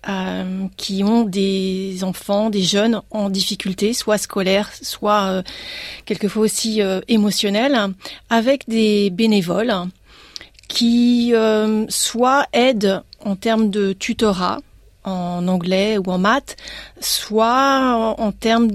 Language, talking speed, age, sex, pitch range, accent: French, 100 wpm, 30-49, female, 190-225 Hz, French